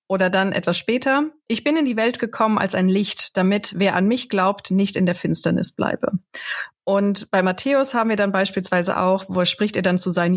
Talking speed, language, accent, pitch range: 215 wpm, German, German, 180-220 Hz